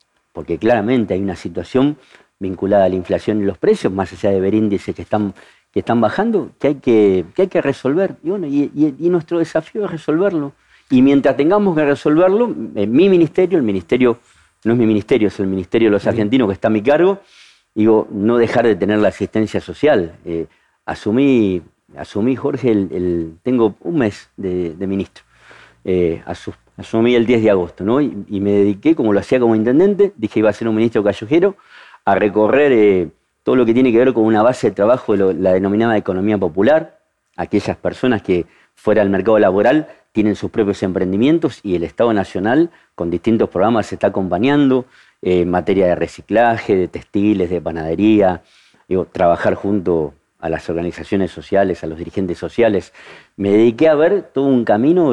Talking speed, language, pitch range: 185 wpm, Spanish, 95-125 Hz